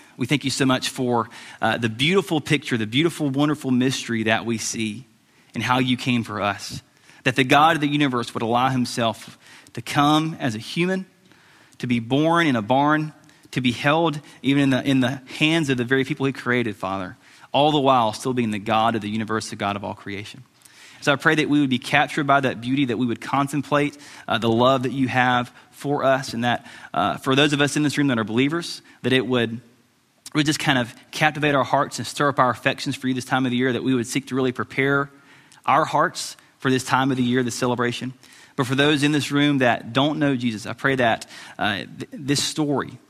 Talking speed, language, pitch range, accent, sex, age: 230 wpm, English, 120-145 Hz, American, male, 30-49